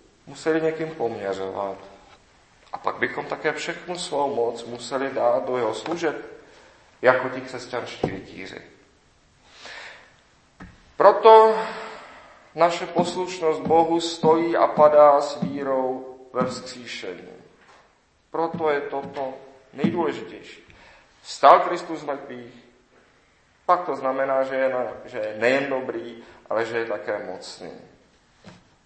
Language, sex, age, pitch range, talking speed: Czech, male, 40-59, 115-155 Hz, 110 wpm